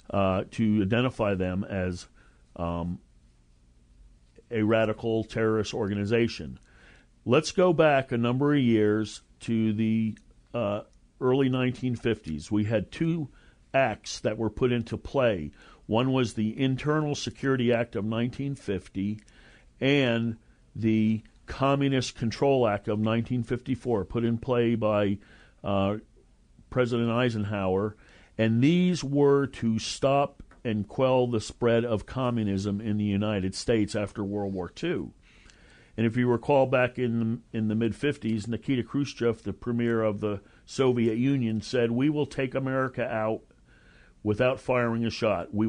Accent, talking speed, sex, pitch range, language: American, 130 wpm, male, 105-130 Hz, English